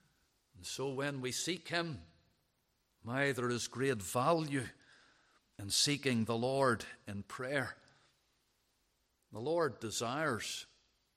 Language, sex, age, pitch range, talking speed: English, male, 50-69, 120-145 Hz, 105 wpm